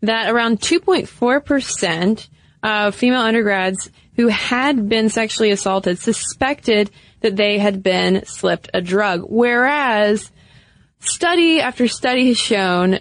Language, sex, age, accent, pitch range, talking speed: English, female, 20-39, American, 190-235 Hz, 115 wpm